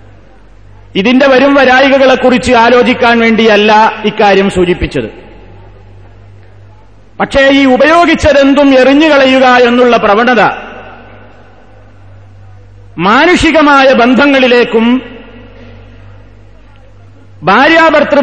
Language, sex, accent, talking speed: Malayalam, male, native, 55 wpm